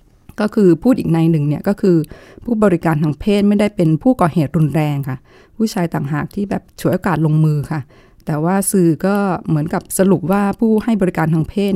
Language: Thai